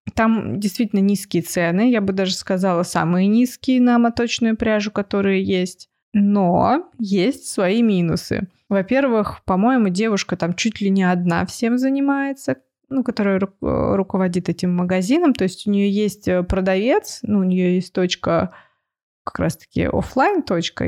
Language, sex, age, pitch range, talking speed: Russian, female, 20-39, 180-235 Hz, 140 wpm